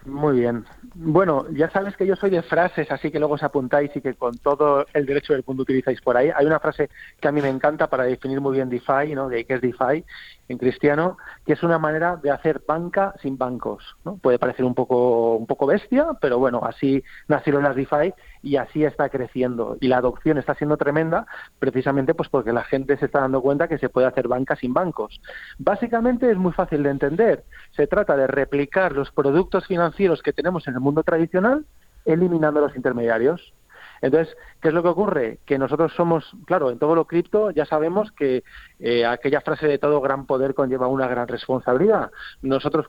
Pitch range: 130-160 Hz